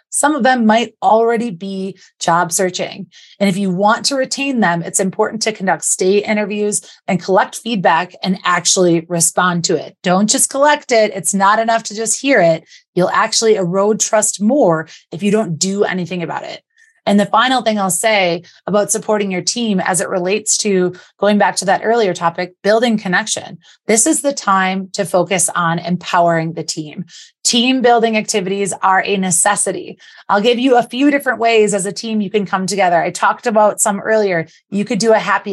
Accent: American